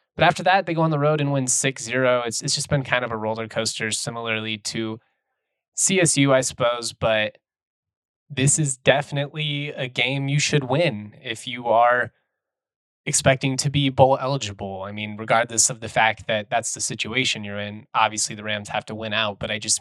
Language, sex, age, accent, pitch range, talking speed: English, male, 20-39, American, 110-135 Hz, 190 wpm